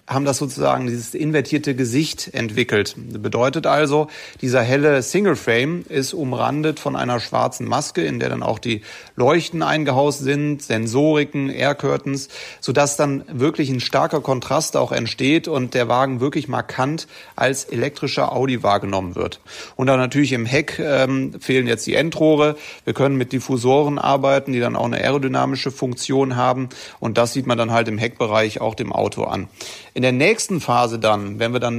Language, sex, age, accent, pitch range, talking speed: German, male, 30-49, German, 125-145 Hz, 170 wpm